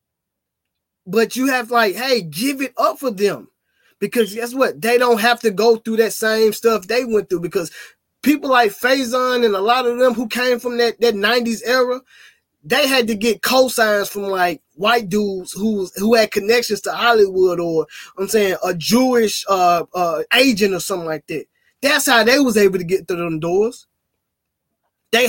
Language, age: English, 20-39